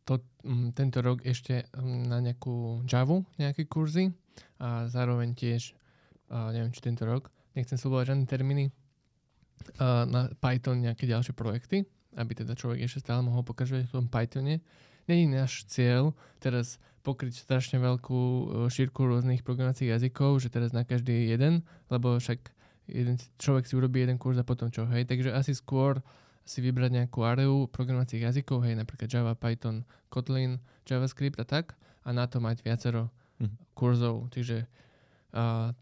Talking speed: 155 wpm